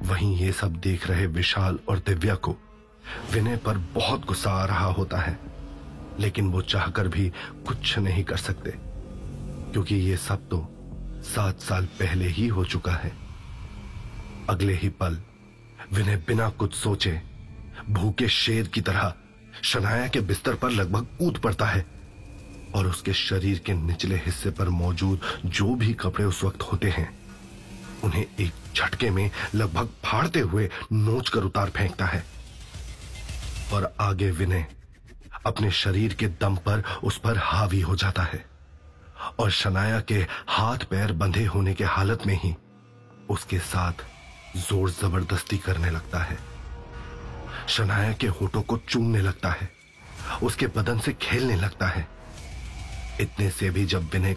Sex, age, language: male, 30-49, Hindi